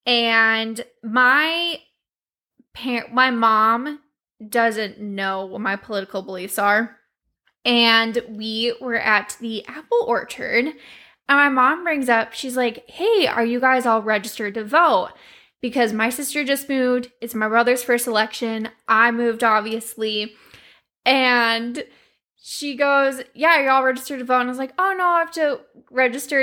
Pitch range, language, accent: 225-295 Hz, English, American